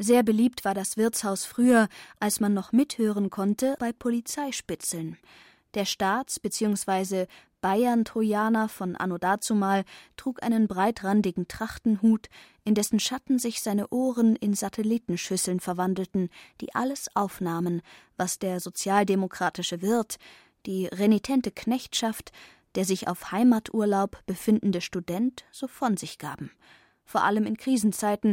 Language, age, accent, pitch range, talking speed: German, 20-39, German, 190-235 Hz, 120 wpm